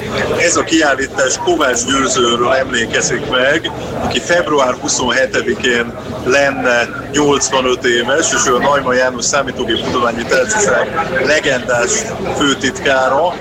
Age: 50-69